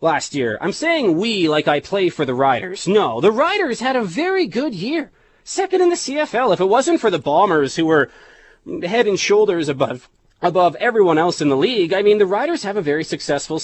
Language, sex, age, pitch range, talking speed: English, male, 30-49, 145-200 Hz, 215 wpm